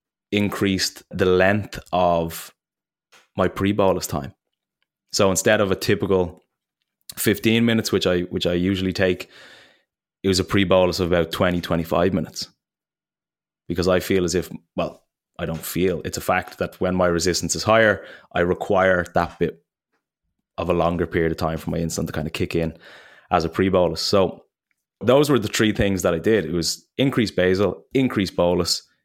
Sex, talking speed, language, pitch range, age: male, 170 wpm, English, 85-105 Hz, 20-39